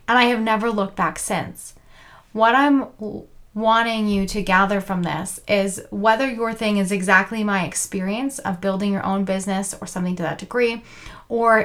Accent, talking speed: American, 175 wpm